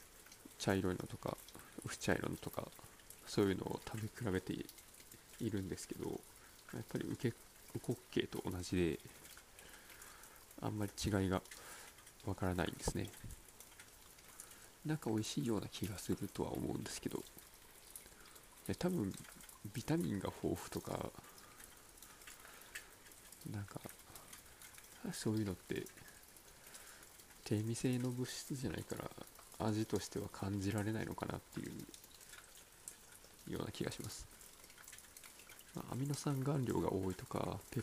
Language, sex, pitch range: Japanese, male, 90-110 Hz